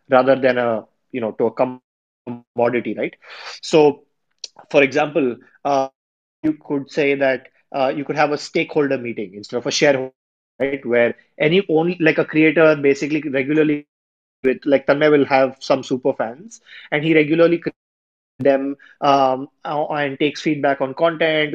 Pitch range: 135-155 Hz